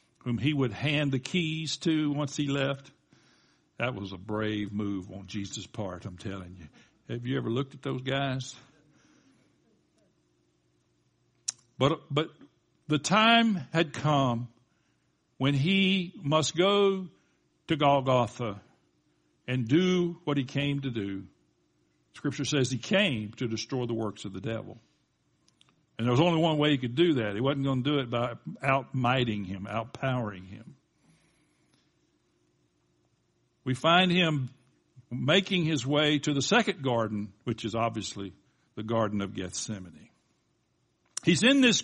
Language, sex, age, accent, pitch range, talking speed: English, male, 60-79, American, 115-155 Hz, 140 wpm